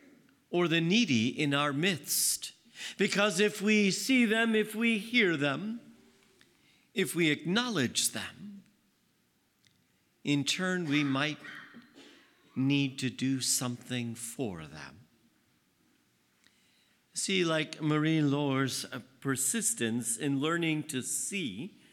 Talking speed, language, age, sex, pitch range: 105 wpm, English, 50-69, male, 140-185 Hz